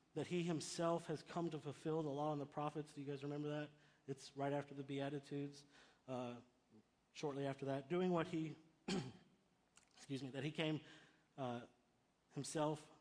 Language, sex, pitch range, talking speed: English, male, 130-160 Hz, 165 wpm